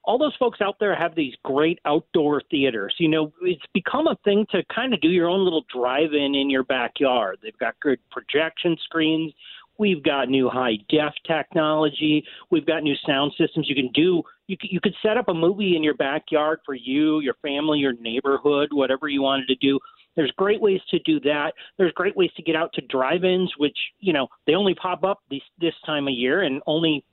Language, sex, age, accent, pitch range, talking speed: English, male, 40-59, American, 150-225 Hz, 205 wpm